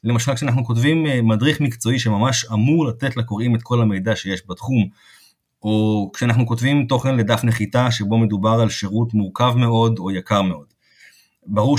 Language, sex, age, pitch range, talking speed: Hebrew, male, 30-49, 105-130 Hz, 155 wpm